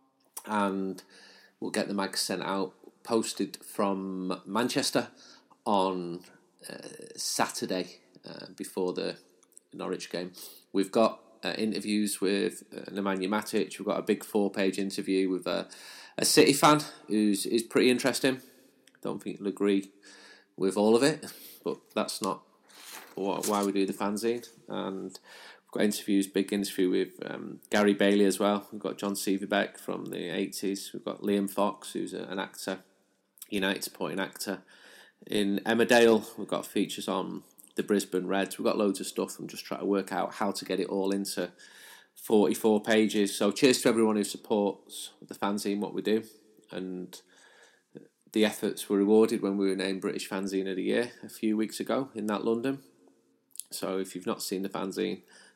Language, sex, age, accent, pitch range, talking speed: English, male, 30-49, British, 95-110 Hz, 165 wpm